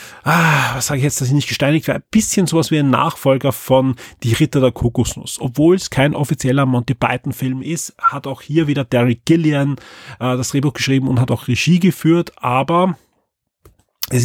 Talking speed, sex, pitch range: 190 wpm, male, 120-145 Hz